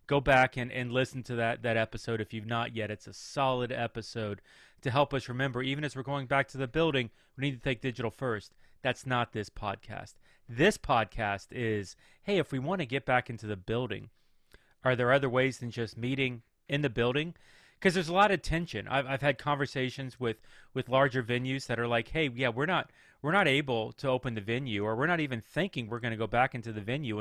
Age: 30-49